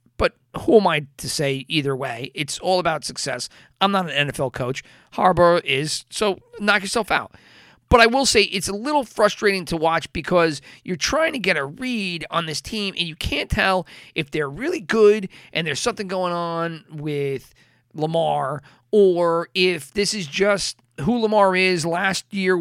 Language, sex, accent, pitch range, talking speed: English, male, American, 150-195 Hz, 180 wpm